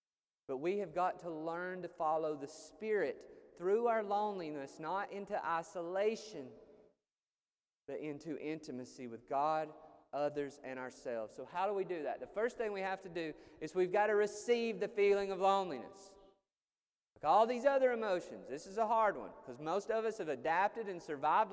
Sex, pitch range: male, 145-205 Hz